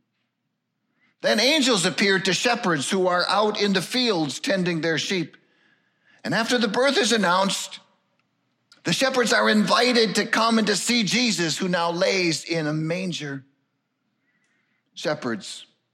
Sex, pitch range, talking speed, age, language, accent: male, 140-180 Hz, 140 wpm, 50-69, English, American